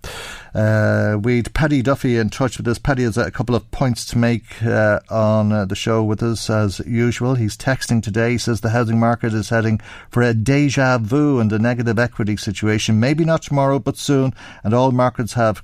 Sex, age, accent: male, 50-69, Irish